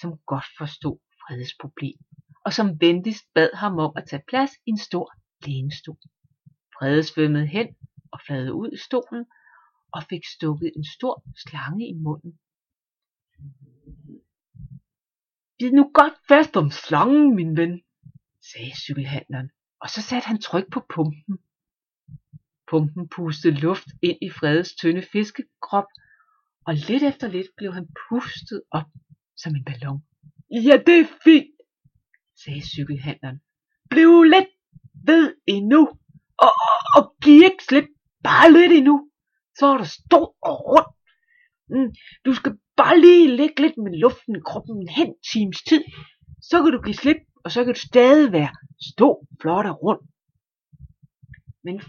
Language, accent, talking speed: Danish, native, 145 wpm